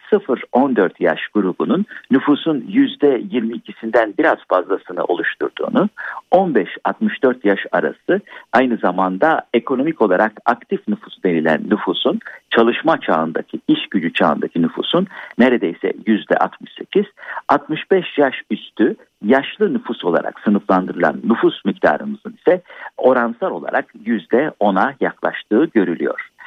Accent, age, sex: native, 50-69, male